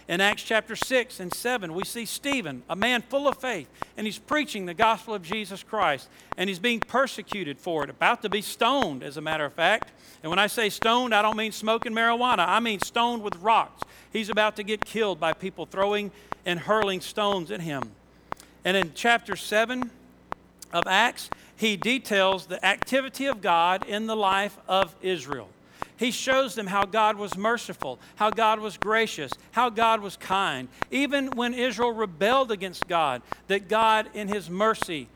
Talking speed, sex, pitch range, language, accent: 185 wpm, male, 185-230 Hz, English, American